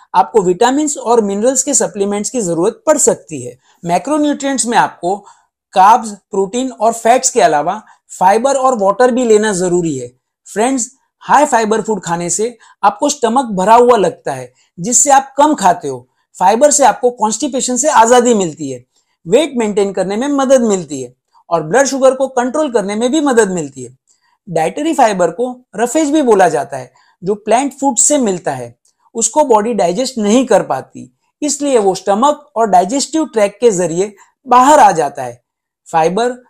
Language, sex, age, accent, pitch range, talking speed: Hindi, male, 50-69, native, 195-270 Hz, 125 wpm